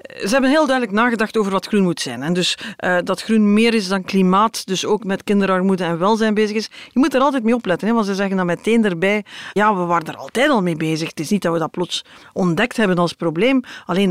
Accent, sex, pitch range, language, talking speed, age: Dutch, female, 180-255 Hz, Dutch, 250 wpm, 40-59